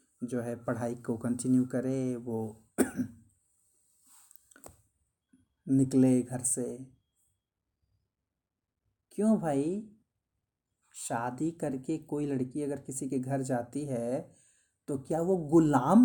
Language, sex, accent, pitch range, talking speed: Hindi, male, native, 120-185 Hz, 95 wpm